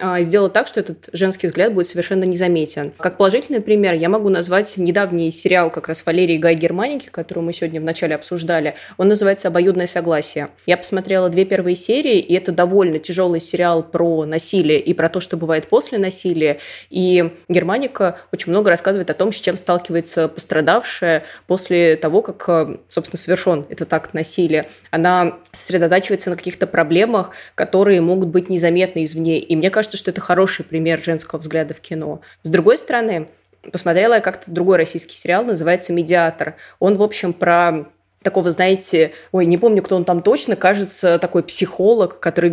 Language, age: Russian, 20-39